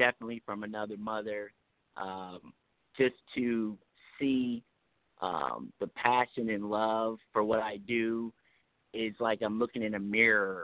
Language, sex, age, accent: Japanese, male, 50-69, American